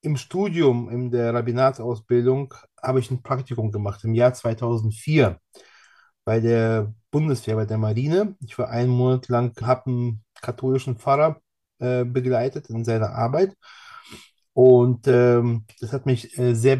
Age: 30-49